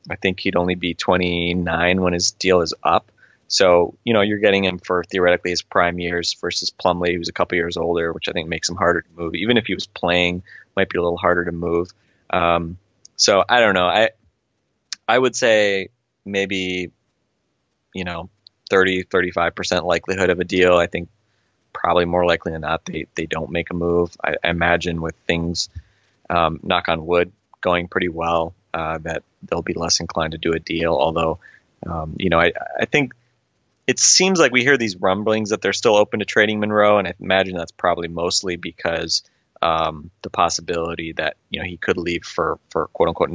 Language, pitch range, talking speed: English, 85-95 Hz, 195 wpm